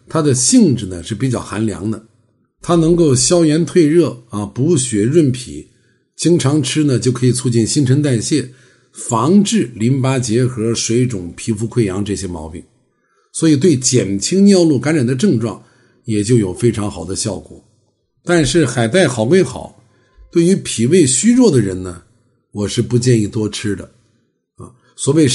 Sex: male